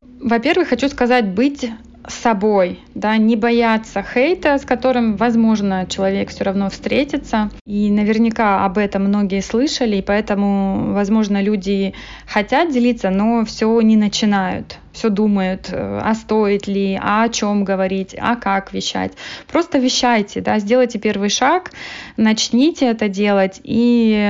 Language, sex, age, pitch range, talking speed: Russian, female, 20-39, 200-235 Hz, 135 wpm